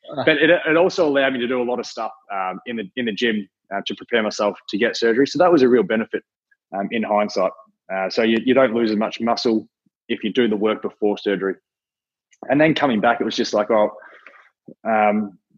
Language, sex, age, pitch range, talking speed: English, male, 20-39, 105-135 Hz, 230 wpm